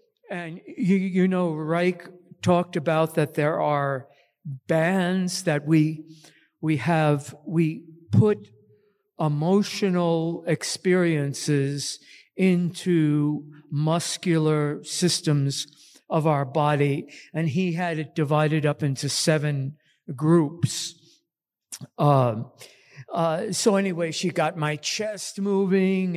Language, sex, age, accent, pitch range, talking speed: English, male, 60-79, American, 150-185 Hz, 100 wpm